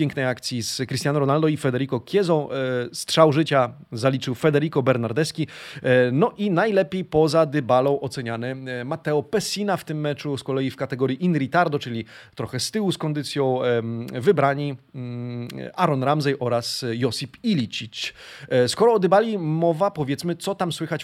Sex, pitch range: male, 130-175 Hz